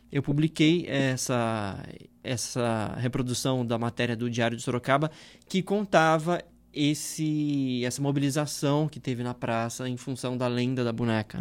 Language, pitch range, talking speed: Portuguese, 125-155 Hz, 130 wpm